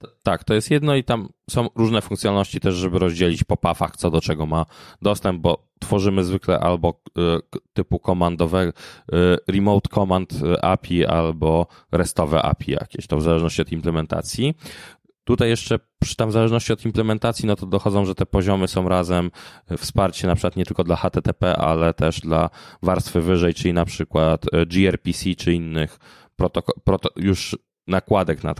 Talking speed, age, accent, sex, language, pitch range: 160 wpm, 20-39, native, male, Polish, 85-105 Hz